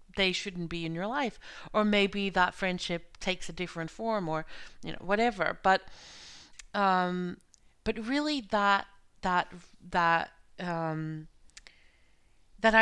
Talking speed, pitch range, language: 125 wpm, 165-205 Hz, English